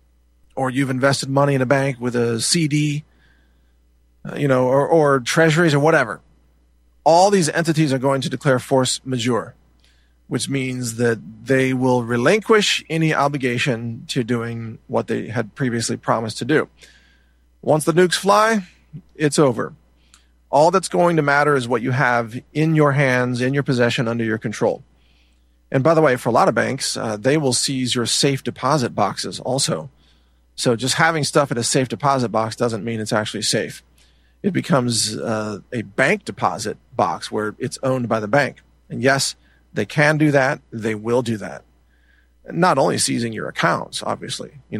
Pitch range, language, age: 100-140 Hz, English, 40-59